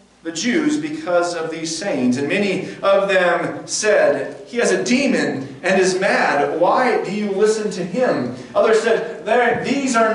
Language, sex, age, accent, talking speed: English, male, 40-59, American, 165 wpm